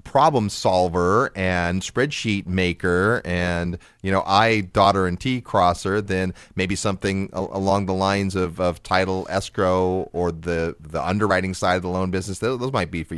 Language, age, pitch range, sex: English, 30-49, 90-130 Hz, male